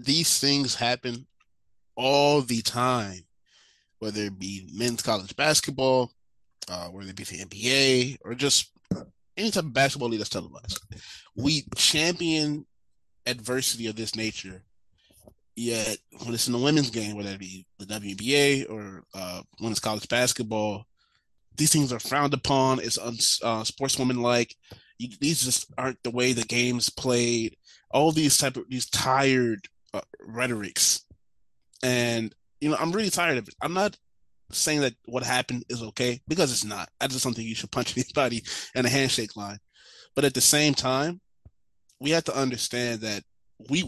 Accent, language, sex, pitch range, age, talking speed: American, English, male, 110-140 Hz, 20-39, 160 wpm